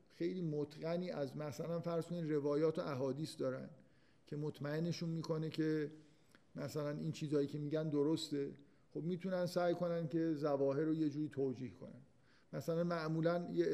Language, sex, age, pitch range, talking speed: Persian, male, 50-69, 140-160 Hz, 145 wpm